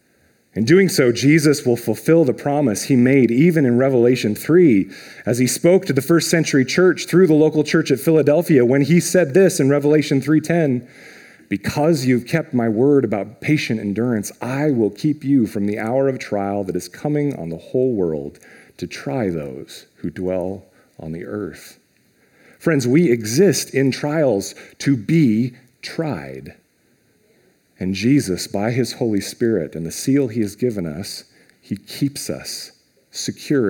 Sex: male